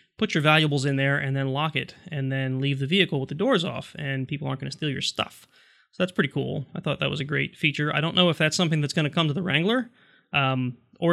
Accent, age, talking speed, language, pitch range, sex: American, 20-39, 280 wpm, English, 135-165 Hz, male